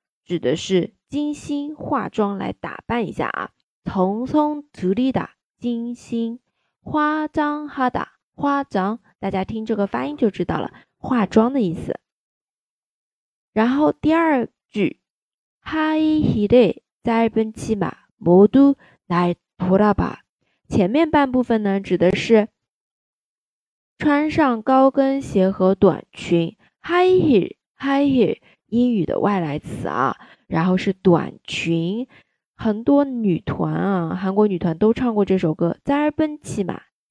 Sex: female